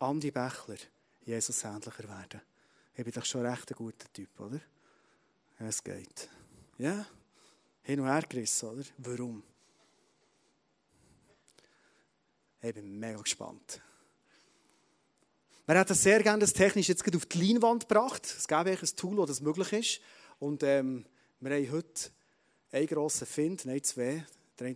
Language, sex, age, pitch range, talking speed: German, male, 30-49, 130-195 Hz, 140 wpm